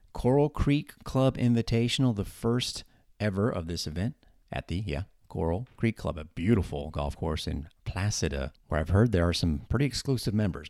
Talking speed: 175 wpm